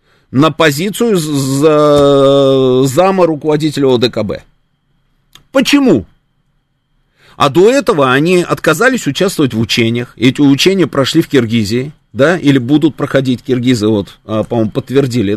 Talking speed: 110 wpm